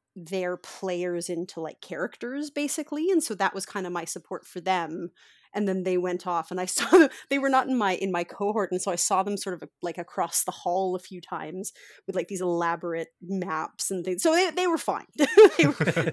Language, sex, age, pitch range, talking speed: English, female, 30-49, 180-255 Hz, 230 wpm